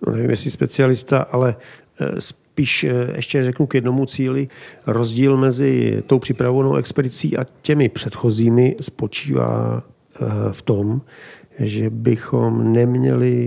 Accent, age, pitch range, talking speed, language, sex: native, 40-59, 105-125 Hz, 110 wpm, Czech, male